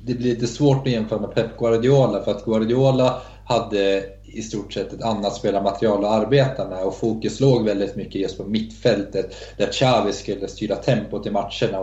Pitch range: 100-115 Hz